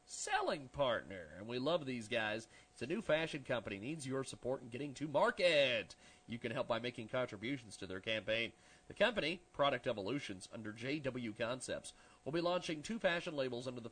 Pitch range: 120-150 Hz